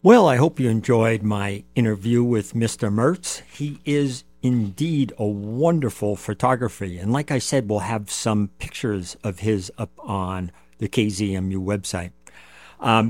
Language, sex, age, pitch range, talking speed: English, male, 50-69, 100-145 Hz, 145 wpm